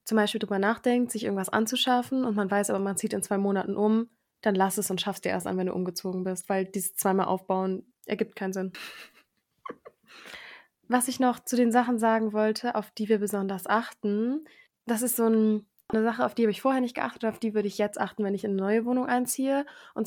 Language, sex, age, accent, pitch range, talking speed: German, female, 20-39, German, 200-240 Hz, 225 wpm